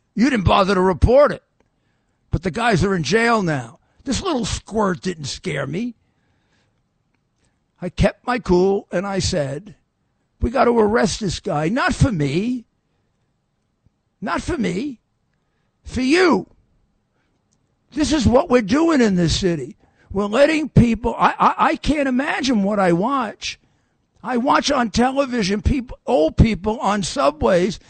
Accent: American